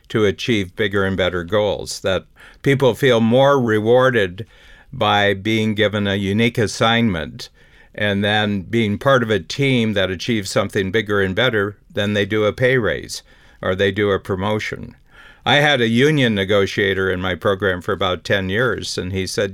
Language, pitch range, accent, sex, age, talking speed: English, 95-115 Hz, American, male, 50-69, 170 wpm